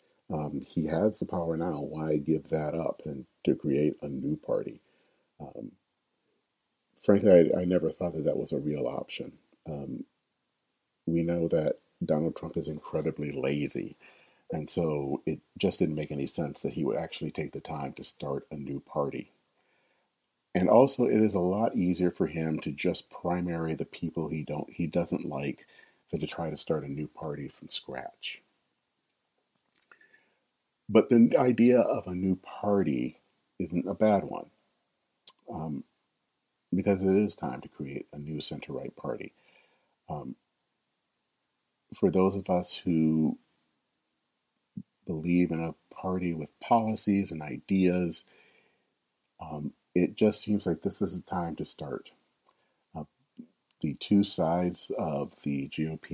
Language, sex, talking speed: English, male, 150 wpm